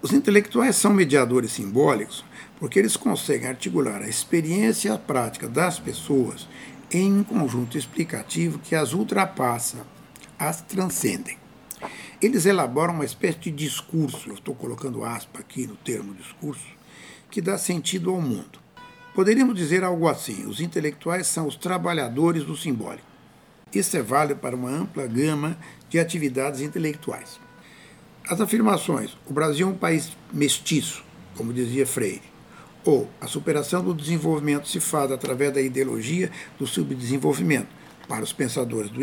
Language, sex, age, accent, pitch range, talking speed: Portuguese, male, 60-79, Brazilian, 145-190 Hz, 145 wpm